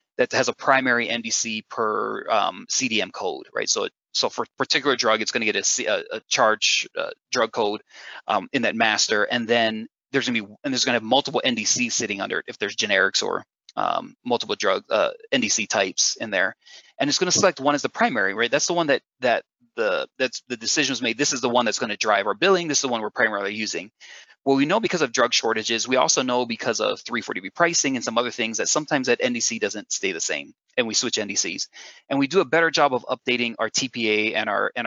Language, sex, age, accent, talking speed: English, male, 30-49, American, 235 wpm